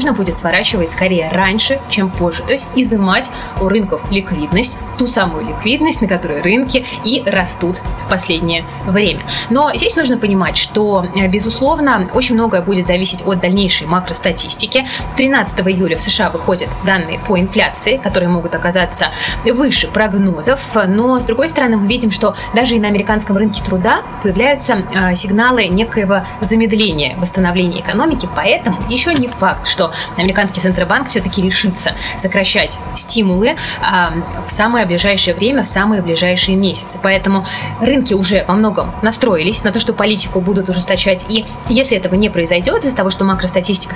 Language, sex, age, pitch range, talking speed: Russian, female, 20-39, 185-230 Hz, 145 wpm